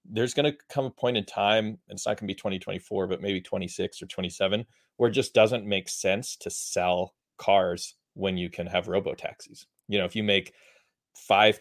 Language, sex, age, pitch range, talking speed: English, male, 30-49, 90-100 Hz, 210 wpm